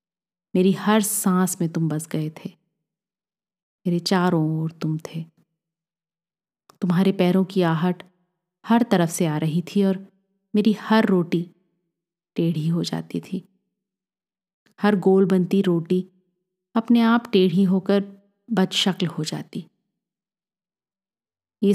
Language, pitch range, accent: Hindi, 170-195 Hz, native